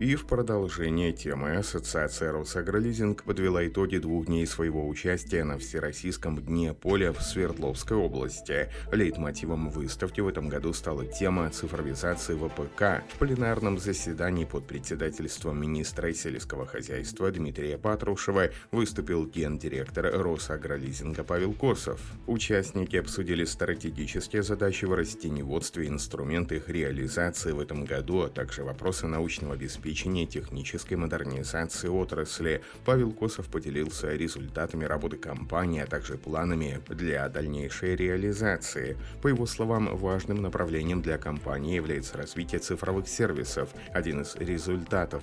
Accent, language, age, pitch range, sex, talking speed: native, Russian, 30-49, 75-95 Hz, male, 120 wpm